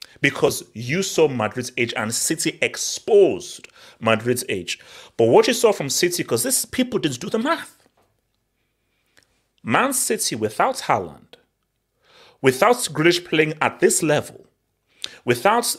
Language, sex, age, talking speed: English, male, 30-49, 130 wpm